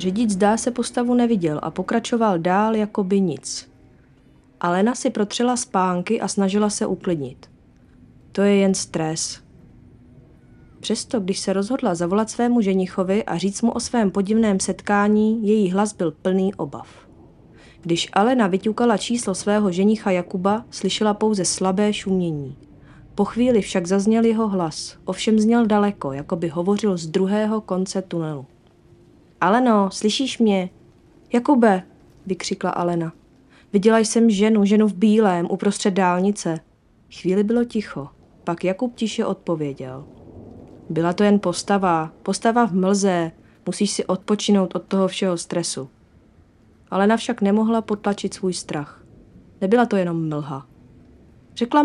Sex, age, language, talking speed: female, 30-49, Czech, 135 wpm